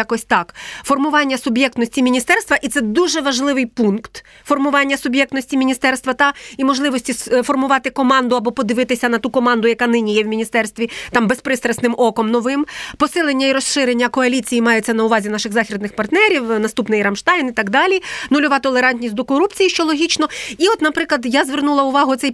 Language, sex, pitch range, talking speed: Ukrainian, female, 235-290 Hz, 160 wpm